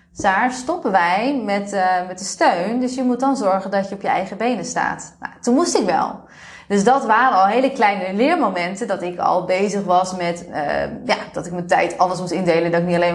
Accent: Dutch